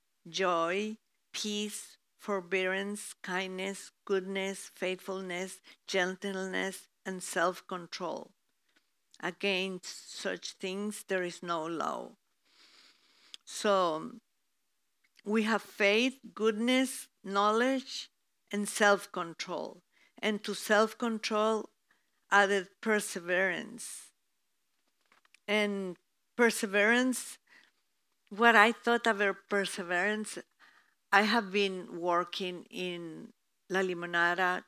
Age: 50-69